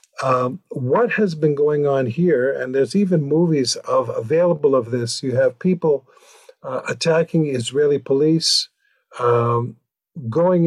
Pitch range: 130-180 Hz